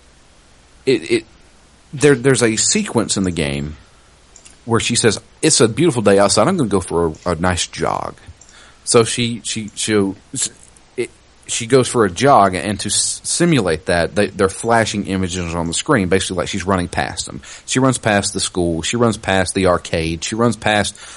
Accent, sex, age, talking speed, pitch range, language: American, male, 40-59, 190 wpm, 100-155 Hz, English